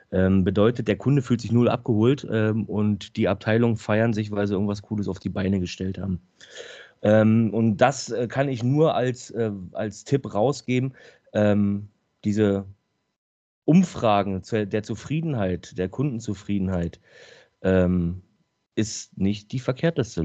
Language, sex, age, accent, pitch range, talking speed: English, male, 30-49, German, 100-125 Hz, 120 wpm